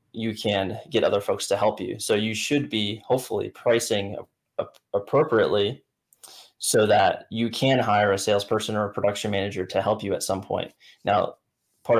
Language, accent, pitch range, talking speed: English, American, 100-115 Hz, 170 wpm